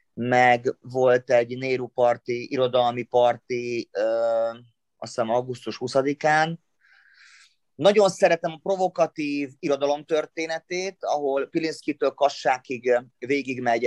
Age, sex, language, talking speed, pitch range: 30-49, male, Hungarian, 85 wpm, 125-145 Hz